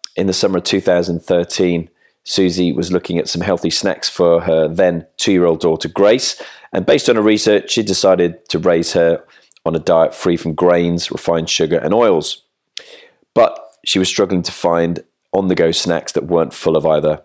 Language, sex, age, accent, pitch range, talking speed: English, male, 30-49, British, 85-110 Hz, 175 wpm